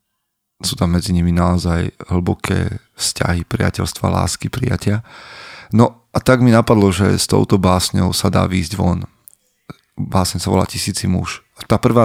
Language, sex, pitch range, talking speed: Slovak, male, 90-105 Hz, 150 wpm